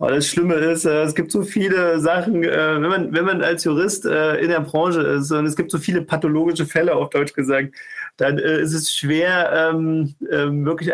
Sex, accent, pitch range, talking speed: male, German, 150-170 Hz, 180 wpm